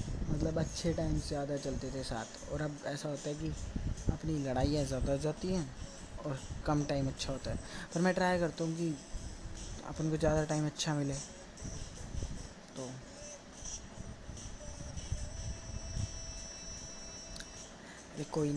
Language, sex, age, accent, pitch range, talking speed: Hindi, female, 20-39, native, 130-150 Hz, 125 wpm